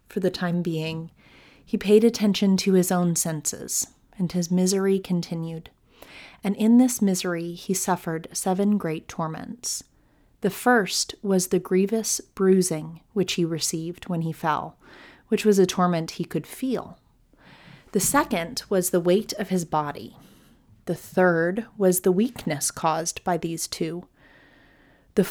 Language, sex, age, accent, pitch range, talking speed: English, female, 30-49, American, 175-220 Hz, 145 wpm